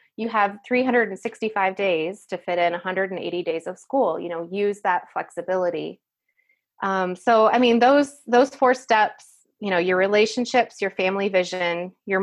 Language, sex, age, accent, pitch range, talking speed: English, female, 20-39, American, 175-215 Hz, 155 wpm